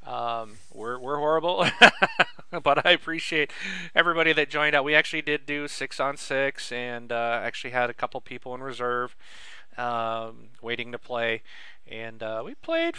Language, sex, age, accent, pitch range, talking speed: English, male, 40-59, American, 120-155 Hz, 160 wpm